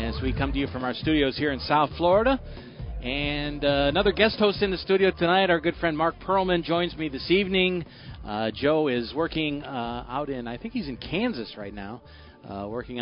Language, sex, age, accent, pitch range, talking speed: English, male, 40-59, American, 110-145 Hz, 210 wpm